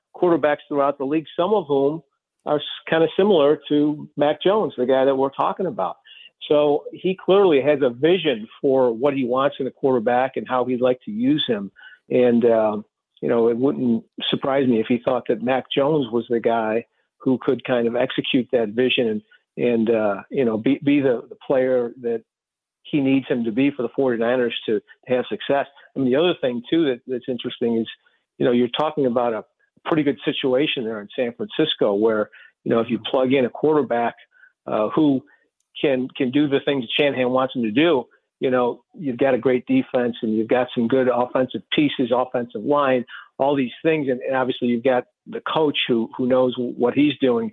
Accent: American